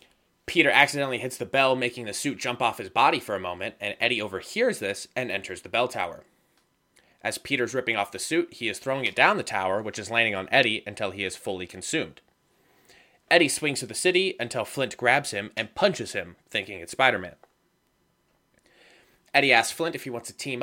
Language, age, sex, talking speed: English, 20-39, male, 205 wpm